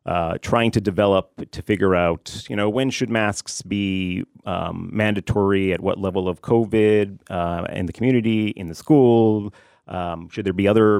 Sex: male